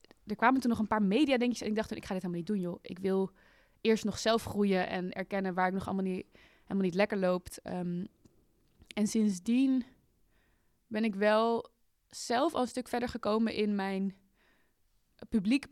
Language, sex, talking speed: Dutch, female, 195 wpm